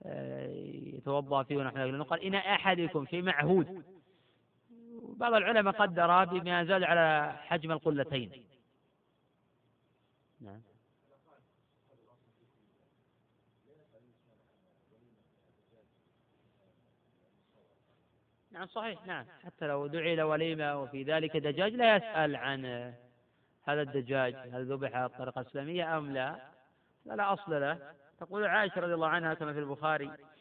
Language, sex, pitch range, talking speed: Arabic, male, 140-190 Hz, 100 wpm